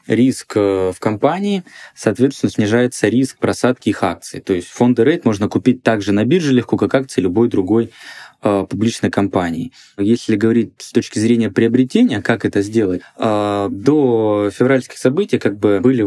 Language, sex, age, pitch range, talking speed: Russian, male, 20-39, 100-125 Hz, 150 wpm